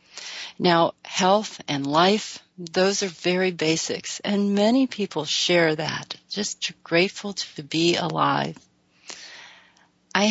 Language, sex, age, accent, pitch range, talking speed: English, female, 40-59, American, 170-205 Hz, 110 wpm